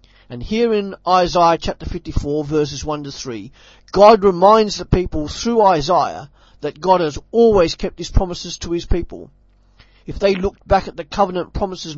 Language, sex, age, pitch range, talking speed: English, male, 40-59, 145-195 Hz, 175 wpm